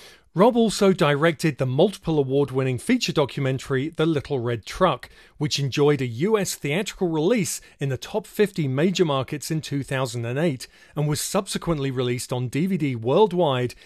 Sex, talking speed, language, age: male, 145 wpm, English, 40-59